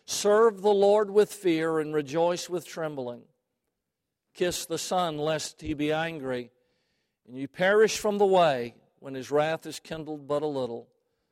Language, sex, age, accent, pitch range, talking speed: English, male, 50-69, American, 125-150 Hz, 160 wpm